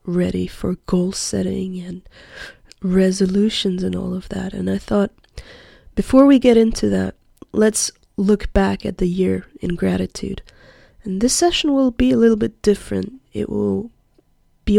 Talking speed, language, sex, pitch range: 155 wpm, English, female, 150-215 Hz